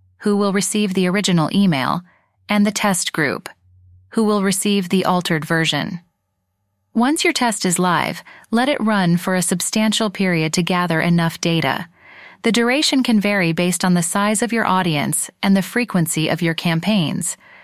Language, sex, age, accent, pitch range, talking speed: English, female, 30-49, American, 175-215 Hz, 165 wpm